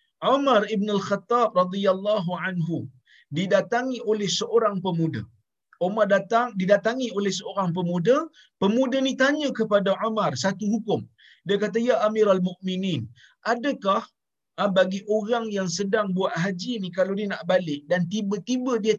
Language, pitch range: Malayalam, 160-225 Hz